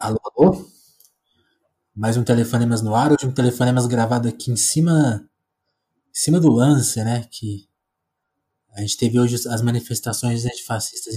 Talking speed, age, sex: 145 wpm, 20-39, male